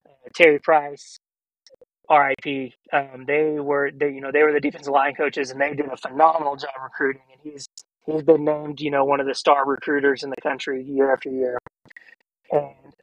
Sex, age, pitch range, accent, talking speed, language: male, 20-39, 140-160 Hz, American, 190 wpm, English